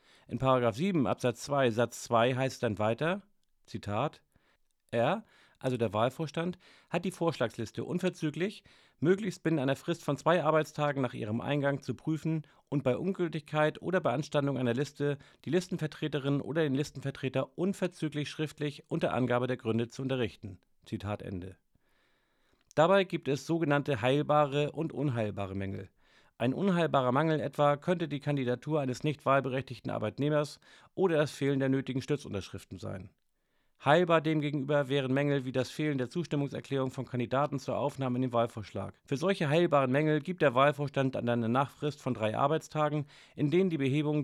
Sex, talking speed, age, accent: male, 155 wpm, 40-59, German